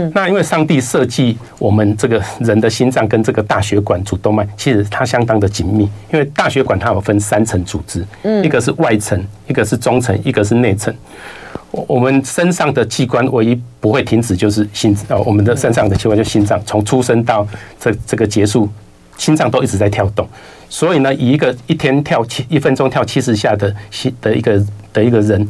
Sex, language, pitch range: male, Chinese, 105-130 Hz